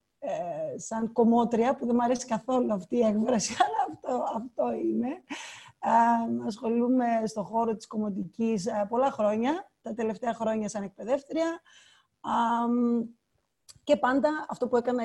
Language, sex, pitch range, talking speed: Greek, female, 215-260 Hz, 130 wpm